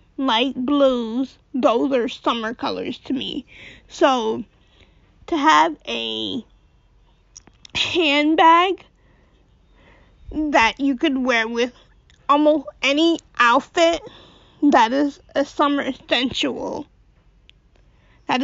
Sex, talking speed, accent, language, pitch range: female, 90 wpm, American, English, 240-290 Hz